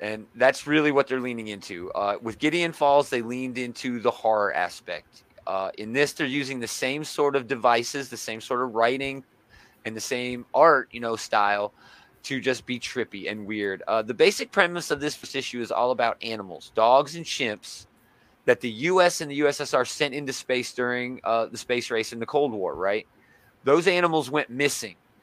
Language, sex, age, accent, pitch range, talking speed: English, male, 30-49, American, 115-150 Hz, 195 wpm